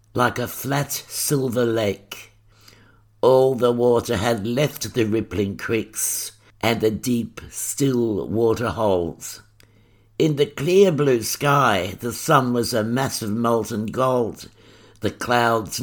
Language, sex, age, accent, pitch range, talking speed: English, male, 60-79, British, 105-125 Hz, 130 wpm